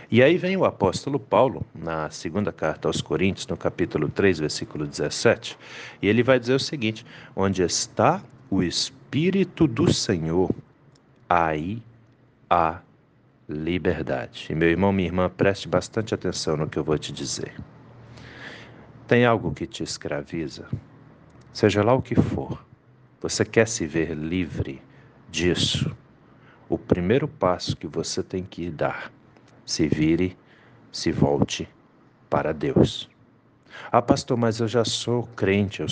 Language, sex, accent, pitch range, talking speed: Portuguese, male, Brazilian, 80-115 Hz, 140 wpm